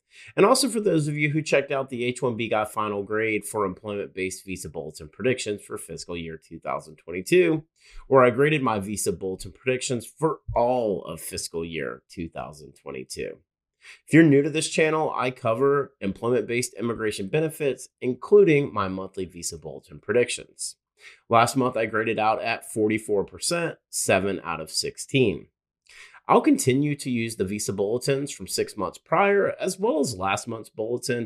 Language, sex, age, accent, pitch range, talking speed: English, male, 30-49, American, 105-155 Hz, 155 wpm